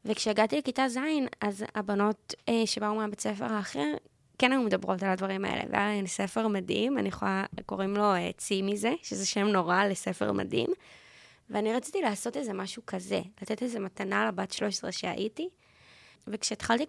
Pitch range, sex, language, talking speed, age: 195-220 Hz, female, Hebrew, 150 wpm, 20-39